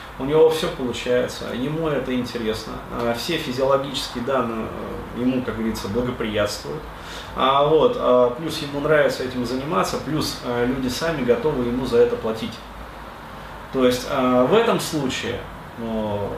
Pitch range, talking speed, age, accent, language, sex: 115-160 Hz, 120 wpm, 30-49, native, Russian, male